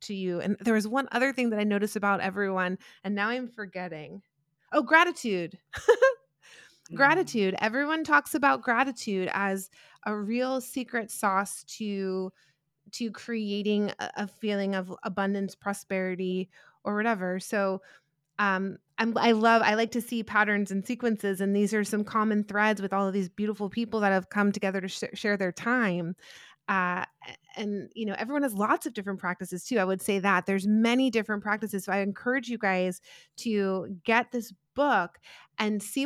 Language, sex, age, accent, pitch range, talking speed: English, female, 20-39, American, 190-225 Hz, 170 wpm